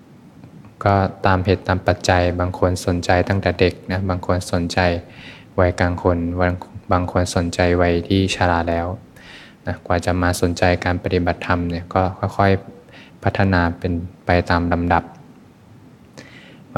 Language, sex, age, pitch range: Thai, male, 20-39, 85-95 Hz